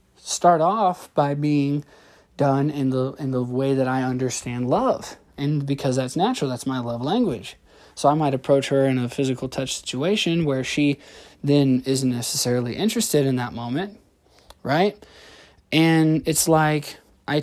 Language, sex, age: English, male, 20-39